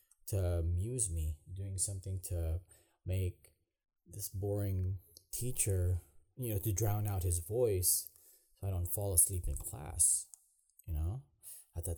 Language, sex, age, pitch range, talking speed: English, male, 20-39, 85-100 Hz, 140 wpm